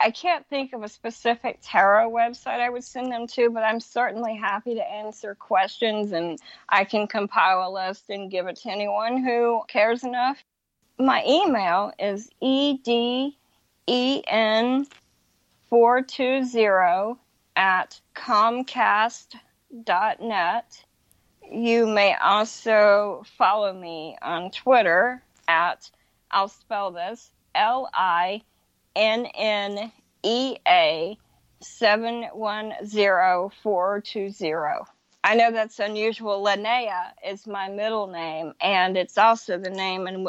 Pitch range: 190-240 Hz